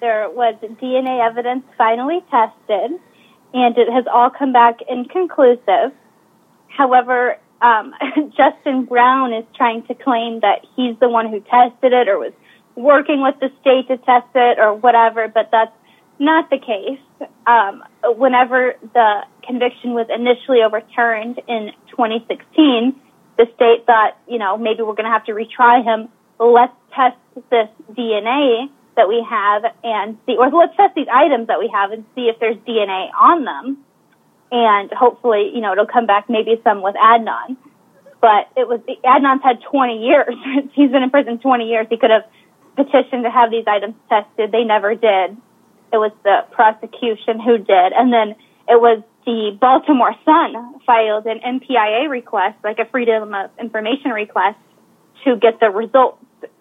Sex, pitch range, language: female, 225-255 Hz, English